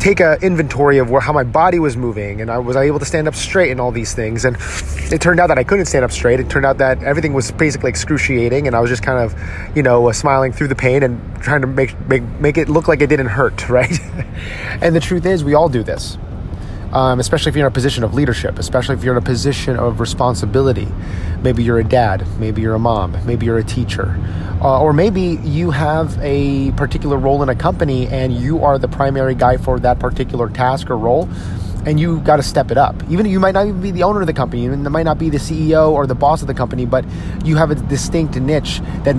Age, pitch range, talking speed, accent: 30-49, 120-150 Hz, 250 wpm, American